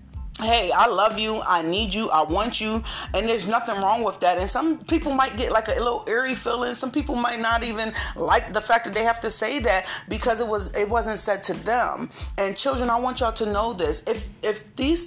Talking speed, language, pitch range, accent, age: 245 wpm, English, 200-240 Hz, American, 30-49